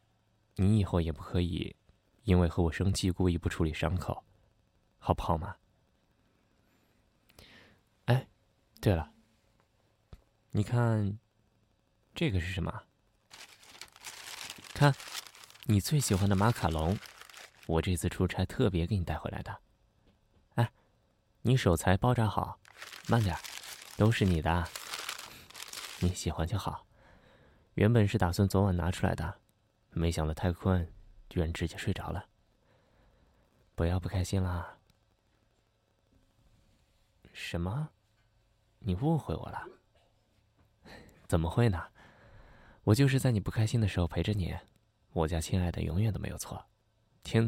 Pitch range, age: 90-110 Hz, 20-39